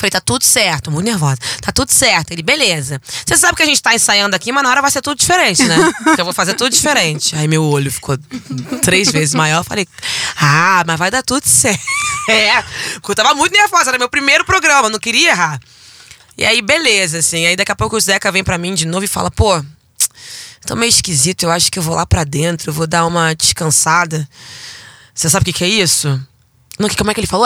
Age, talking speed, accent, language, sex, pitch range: 20-39, 230 wpm, Brazilian, Portuguese, female, 165-215 Hz